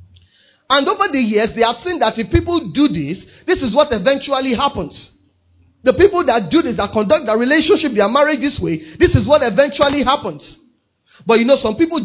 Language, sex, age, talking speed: English, male, 30-49, 200 wpm